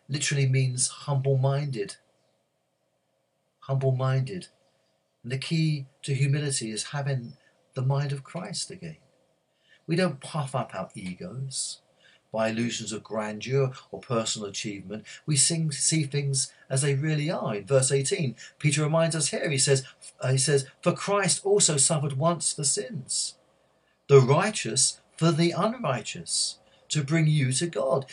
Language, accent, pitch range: English, British, 135-175 Hz